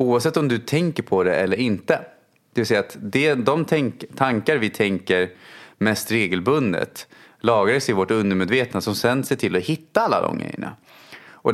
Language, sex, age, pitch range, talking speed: English, male, 30-49, 100-130 Hz, 165 wpm